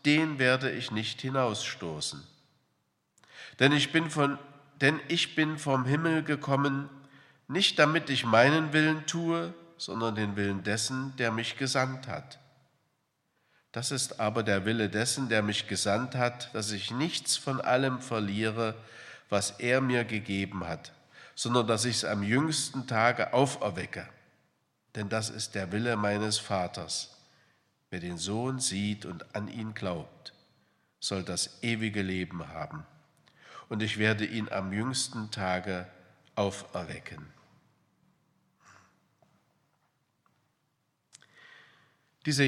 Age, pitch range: 50-69, 110-140 Hz